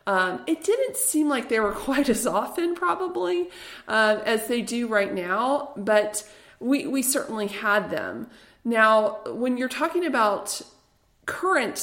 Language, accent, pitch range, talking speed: English, American, 200-265 Hz, 145 wpm